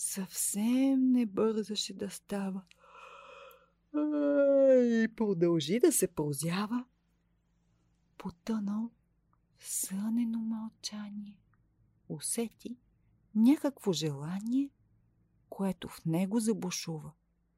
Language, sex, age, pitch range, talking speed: Bulgarian, female, 50-69, 170-245 Hz, 70 wpm